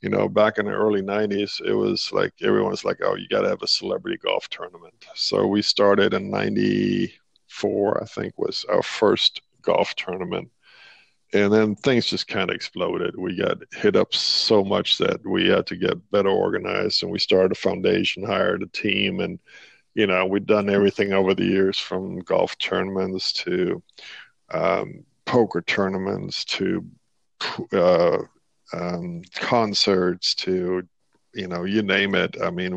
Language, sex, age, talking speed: English, male, 50-69, 165 wpm